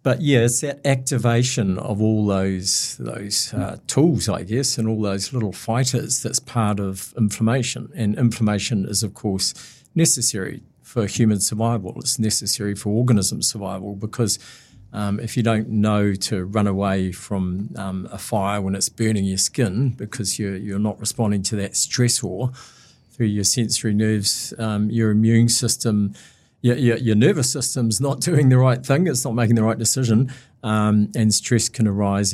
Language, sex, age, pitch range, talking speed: English, male, 50-69, 100-125 Hz, 165 wpm